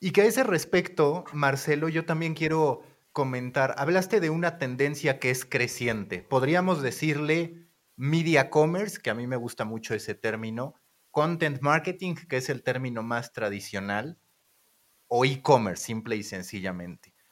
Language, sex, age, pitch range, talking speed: Spanish, male, 30-49, 120-165 Hz, 145 wpm